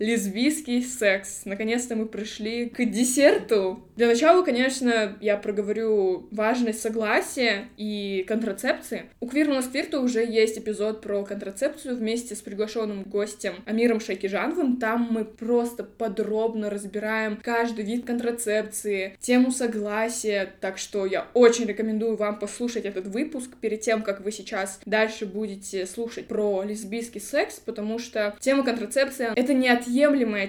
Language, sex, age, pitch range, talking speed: Russian, female, 20-39, 205-240 Hz, 135 wpm